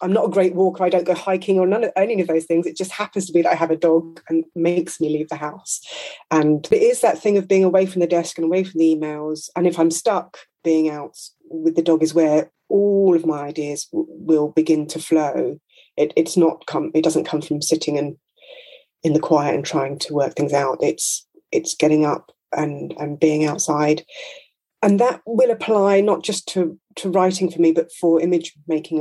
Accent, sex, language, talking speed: British, female, English, 225 wpm